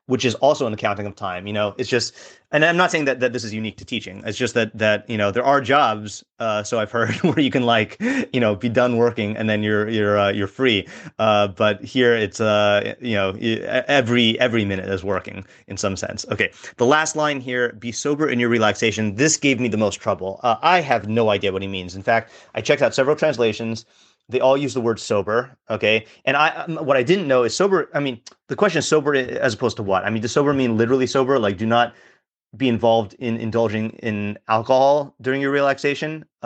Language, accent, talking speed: English, American, 230 wpm